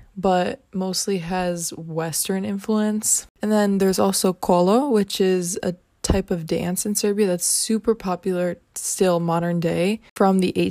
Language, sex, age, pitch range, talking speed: English, female, 20-39, 175-200 Hz, 145 wpm